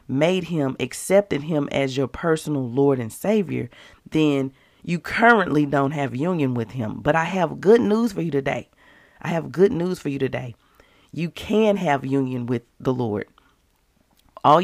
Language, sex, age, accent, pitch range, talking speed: English, female, 40-59, American, 135-185 Hz, 170 wpm